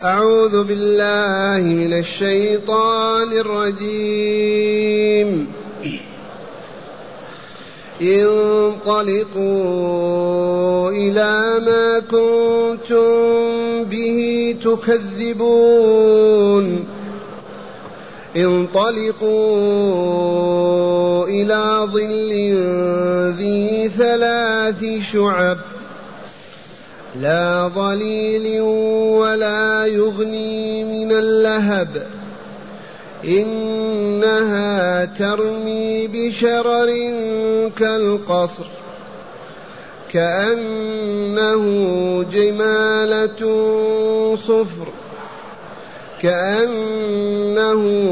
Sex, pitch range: male, 195-220 Hz